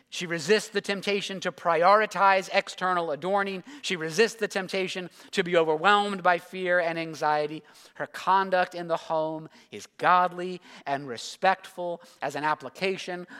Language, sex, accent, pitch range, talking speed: English, male, American, 155-195 Hz, 140 wpm